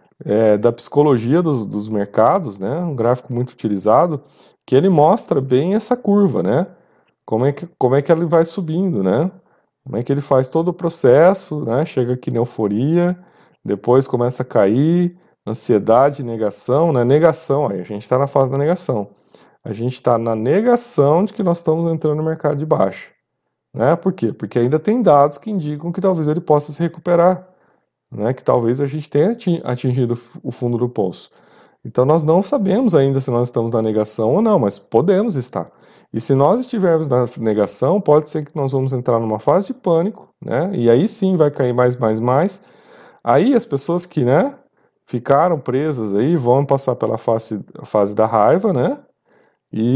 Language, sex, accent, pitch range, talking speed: Portuguese, male, Brazilian, 120-170 Hz, 185 wpm